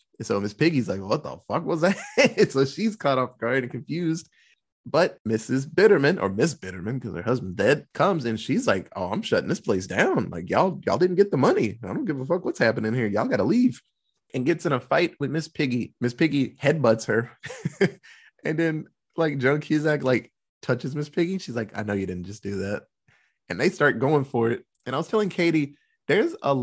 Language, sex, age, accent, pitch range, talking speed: English, male, 20-39, American, 115-155 Hz, 220 wpm